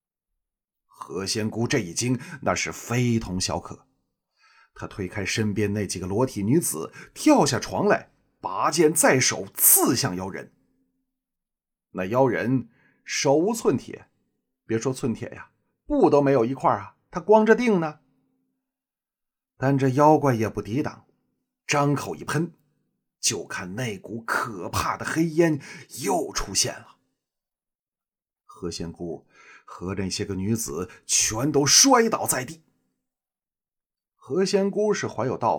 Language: Chinese